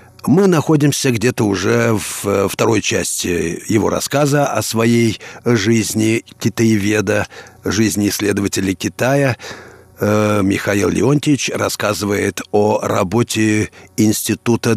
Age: 50-69